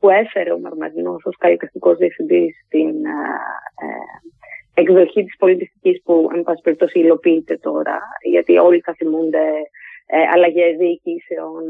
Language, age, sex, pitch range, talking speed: Greek, 30-49, female, 160-260 Hz, 120 wpm